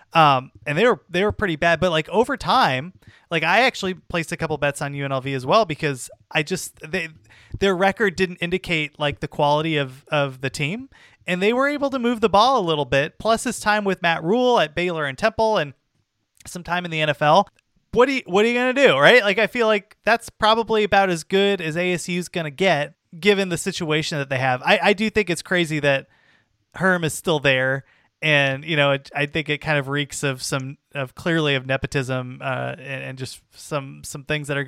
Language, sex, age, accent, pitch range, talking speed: English, male, 30-49, American, 140-195 Hz, 230 wpm